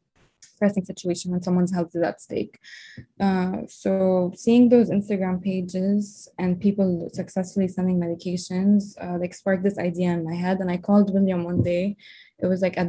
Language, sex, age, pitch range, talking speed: English, female, 20-39, 180-200 Hz, 170 wpm